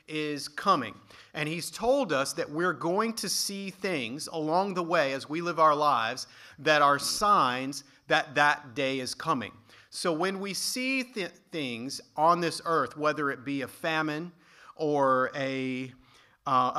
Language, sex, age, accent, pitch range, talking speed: English, male, 40-59, American, 135-170 Hz, 155 wpm